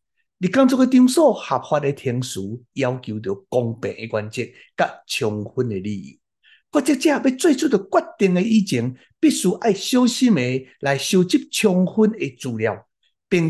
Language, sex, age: Chinese, male, 60-79